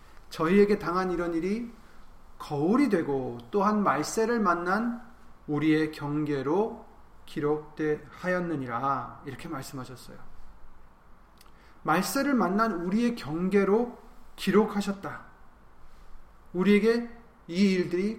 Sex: male